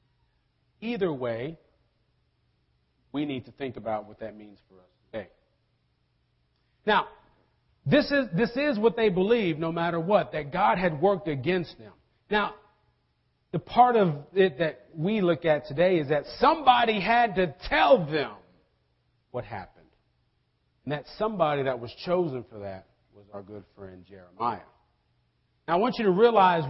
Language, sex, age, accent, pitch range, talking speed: English, male, 40-59, American, 120-185 Hz, 150 wpm